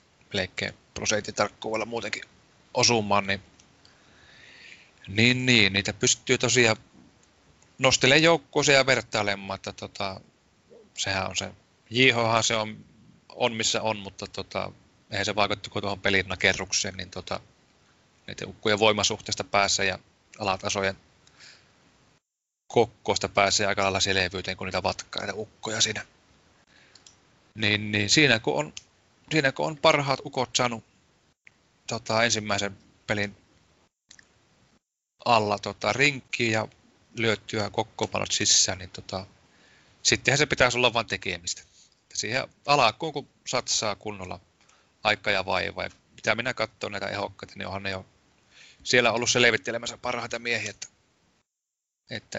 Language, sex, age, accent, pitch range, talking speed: Finnish, male, 30-49, native, 95-120 Hz, 125 wpm